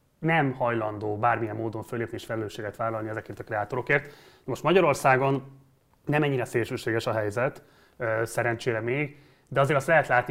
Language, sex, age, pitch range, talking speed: Hungarian, male, 20-39, 110-130 Hz, 145 wpm